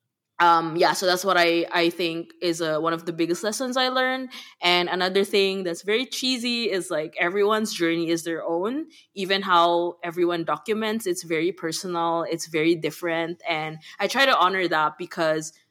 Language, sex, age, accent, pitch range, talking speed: English, female, 20-39, Filipino, 170-215 Hz, 180 wpm